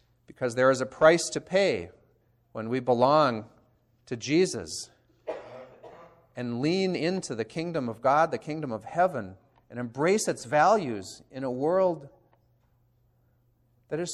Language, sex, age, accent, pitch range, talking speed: English, male, 50-69, American, 115-150 Hz, 135 wpm